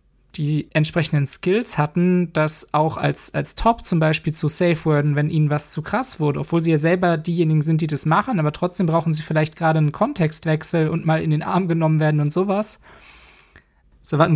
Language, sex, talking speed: German, male, 200 wpm